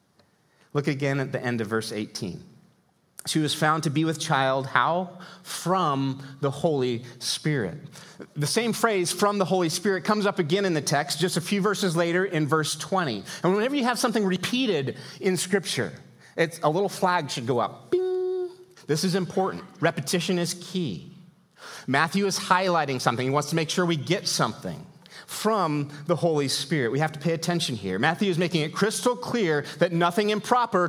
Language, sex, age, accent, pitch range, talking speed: English, male, 30-49, American, 145-190 Hz, 185 wpm